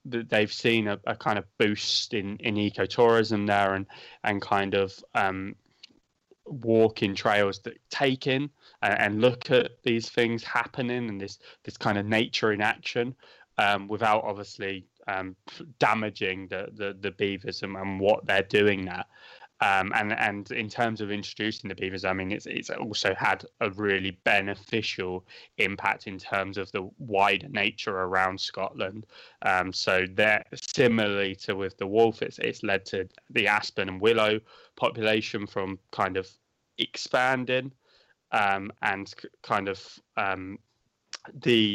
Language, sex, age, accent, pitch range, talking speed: English, male, 20-39, British, 95-115 Hz, 150 wpm